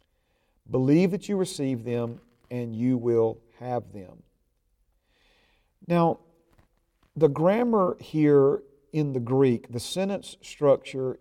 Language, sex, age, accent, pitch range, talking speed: English, male, 50-69, American, 115-145 Hz, 105 wpm